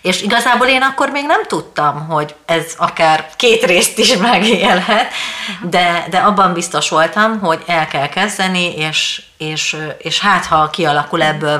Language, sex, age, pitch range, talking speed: Hungarian, female, 30-49, 155-180 Hz, 155 wpm